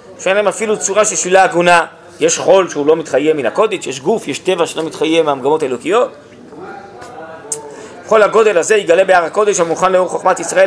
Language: Hebrew